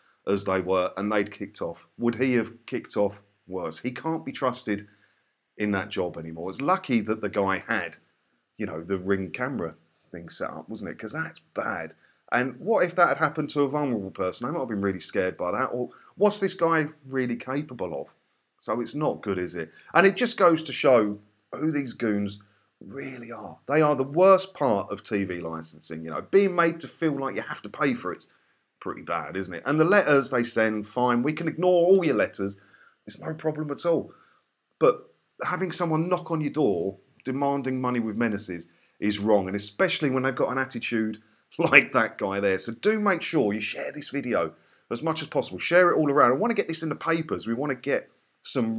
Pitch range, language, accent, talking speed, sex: 100-155 Hz, English, British, 220 wpm, male